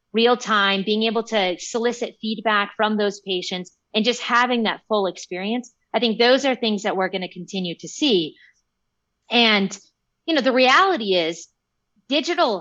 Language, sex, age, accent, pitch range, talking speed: English, female, 30-49, American, 190-245 Hz, 165 wpm